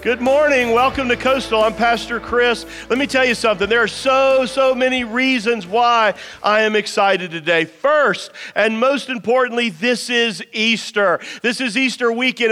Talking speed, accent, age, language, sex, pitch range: 170 wpm, American, 40-59, English, male, 215-255 Hz